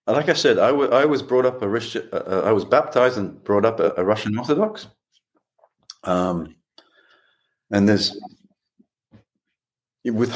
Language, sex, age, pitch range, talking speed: English, male, 40-59, 90-120 Hz, 150 wpm